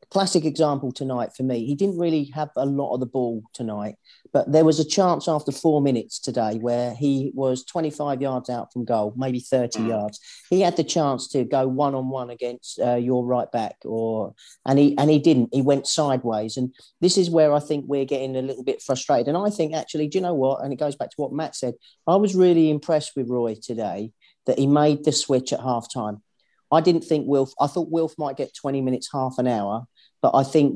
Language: English